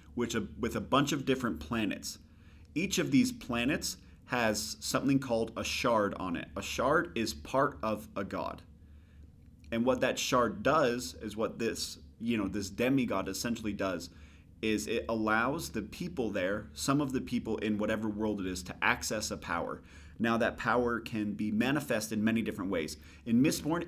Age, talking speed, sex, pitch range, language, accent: 30-49, 180 wpm, male, 90-115 Hz, English, American